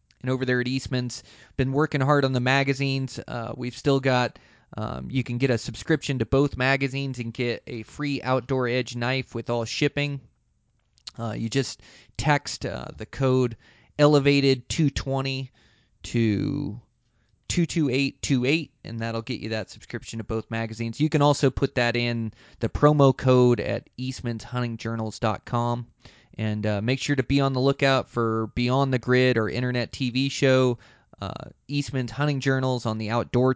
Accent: American